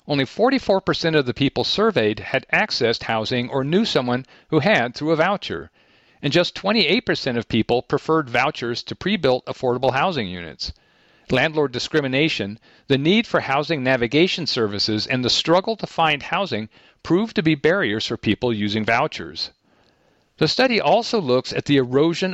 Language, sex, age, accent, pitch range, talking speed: English, male, 50-69, American, 115-165 Hz, 155 wpm